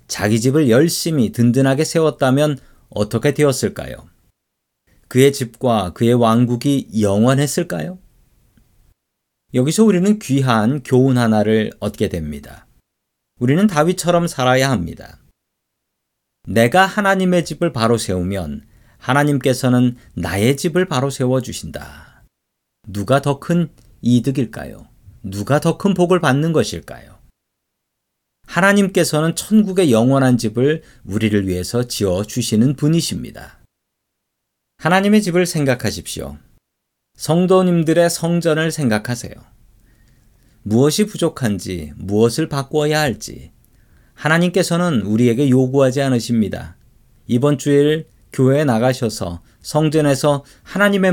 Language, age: Korean, 40-59